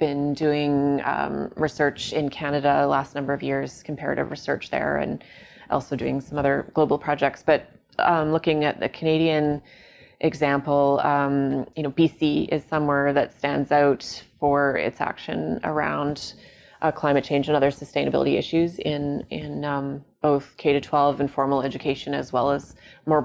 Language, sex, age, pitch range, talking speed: English, female, 20-39, 135-150 Hz, 150 wpm